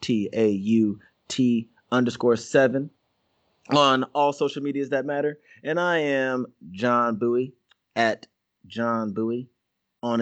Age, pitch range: 20-39, 125-150 Hz